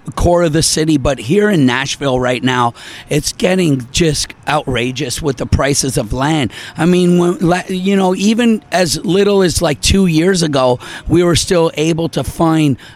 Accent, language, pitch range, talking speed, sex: American, English, 145-175 Hz, 170 wpm, male